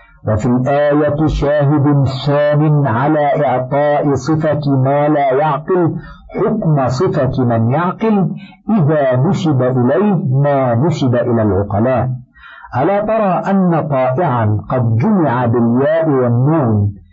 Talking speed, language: 100 wpm, Arabic